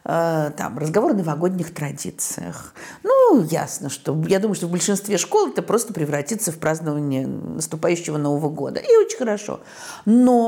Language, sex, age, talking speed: Russian, female, 50-69, 150 wpm